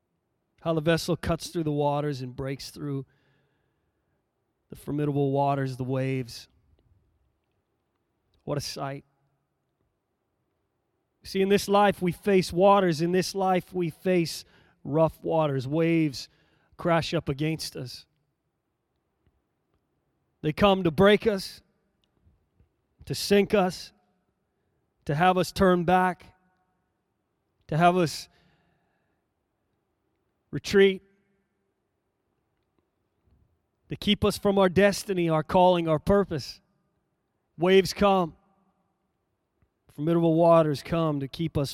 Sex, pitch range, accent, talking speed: male, 150-190 Hz, American, 105 wpm